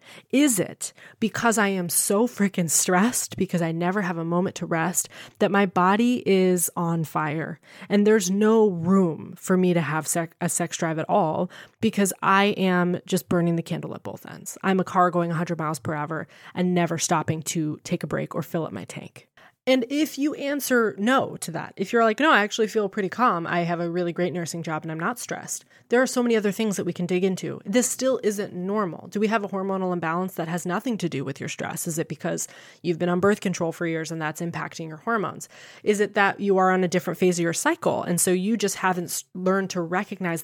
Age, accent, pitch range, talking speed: 20-39, American, 170-210 Hz, 230 wpm